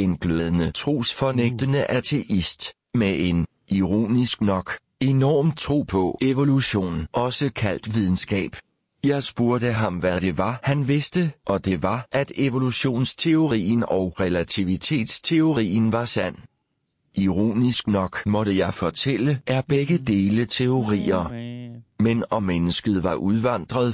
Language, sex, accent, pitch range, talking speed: Danish, male, native, 95-135 Hz, 115 wpm